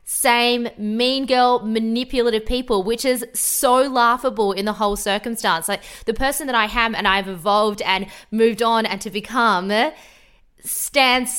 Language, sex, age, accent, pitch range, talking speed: English, female, 20-39, Australian, 205-250 Hz, 155 wpm